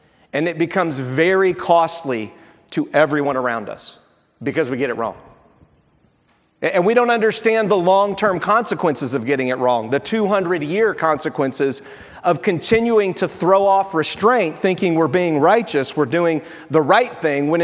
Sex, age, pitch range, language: male, 40-59, 145-195 Hz, English